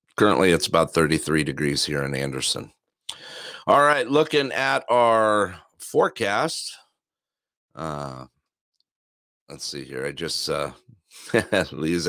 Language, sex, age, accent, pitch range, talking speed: English, male, 50-69, American, 80-115 Hz, 115 wpm